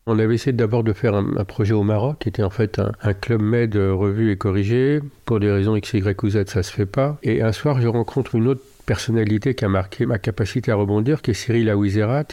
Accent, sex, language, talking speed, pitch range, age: French, male, French, 255 wpm, 105-130 Hz, 50-69